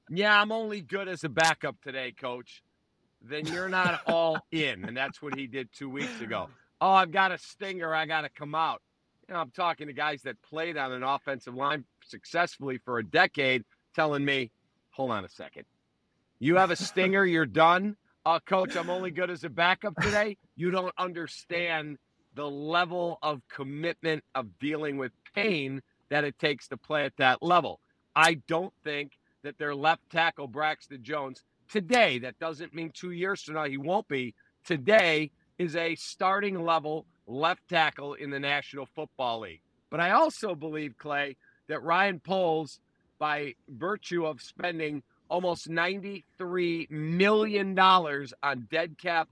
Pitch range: 145-180 Hz